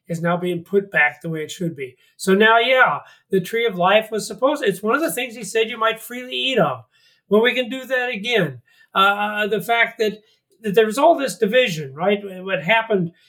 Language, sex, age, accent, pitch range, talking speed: English, male, 50-69, American, 170-225 Hz, 225 wpm